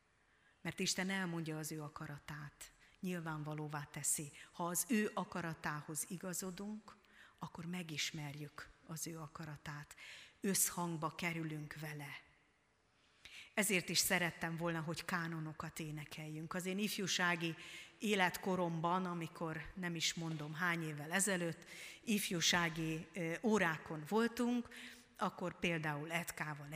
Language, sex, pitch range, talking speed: Hungarian, female, 160-210 Hz, 100 wpm